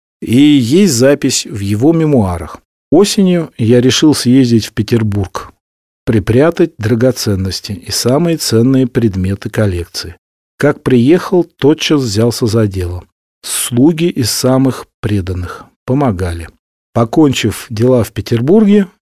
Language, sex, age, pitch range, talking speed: Russian, male, 40-59, 105-140 Hz, 105 wpm